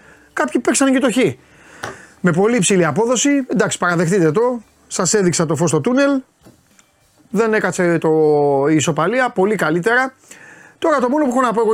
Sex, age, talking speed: male, 30-49, 150 wpm